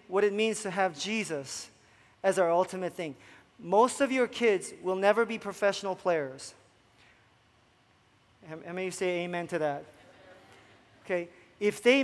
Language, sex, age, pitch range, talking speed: English, male, 30-49, 175-255 Hz, 150 wpm